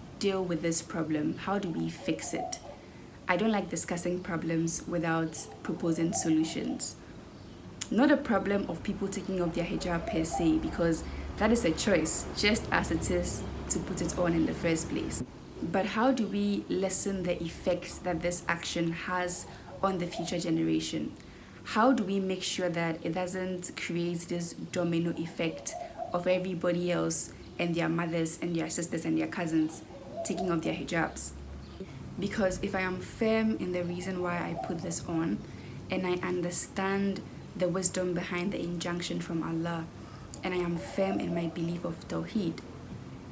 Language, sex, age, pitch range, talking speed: English, female, 20-39, 165-190 Hz, 165 wpm